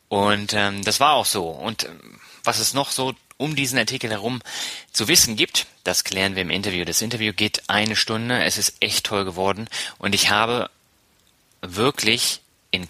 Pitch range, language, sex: 90-110 Hz, German, male